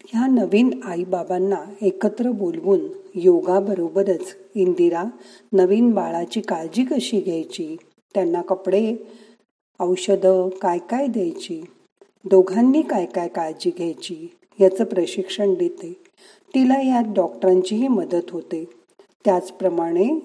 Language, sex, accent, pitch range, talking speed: Marathi, female, native, 185-240 Hz, 100 wpm